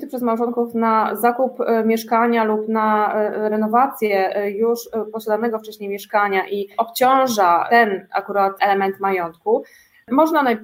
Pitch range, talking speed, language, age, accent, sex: 200-245 Hz, 105 wpm, Polish, 20-39, native, female